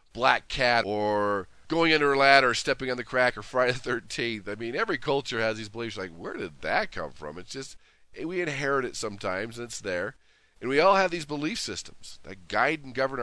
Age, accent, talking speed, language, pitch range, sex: 40-59, American, 220 wpm, English, 95-130 Hz, male